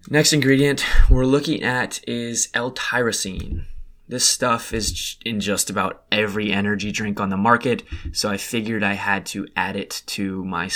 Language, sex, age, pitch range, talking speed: English, male, 20-39, 100-125 Hz, 160 wpm